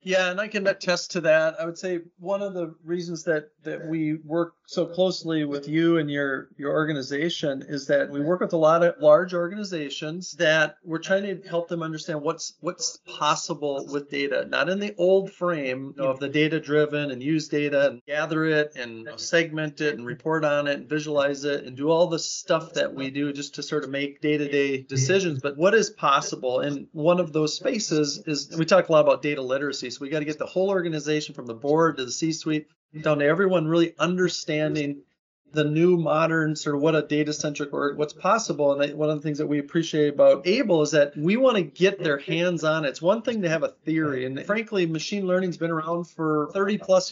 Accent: American